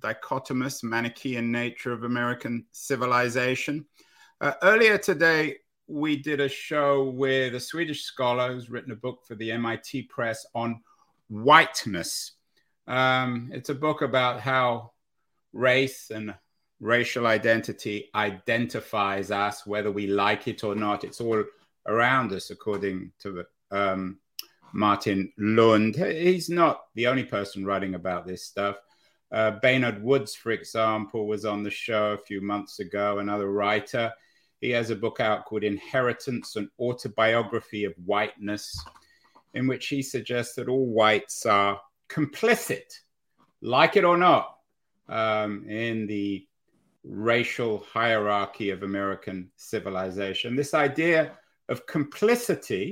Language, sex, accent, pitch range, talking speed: English, male, British, 105-130 Hz, 130 wpm